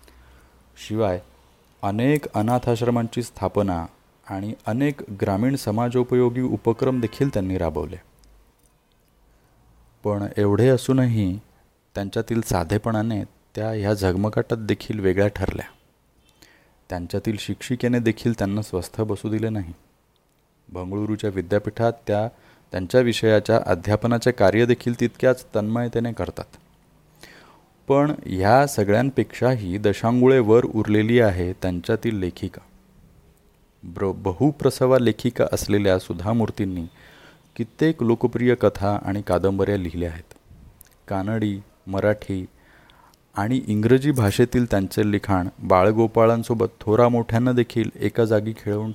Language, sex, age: Marathi, male, 30-49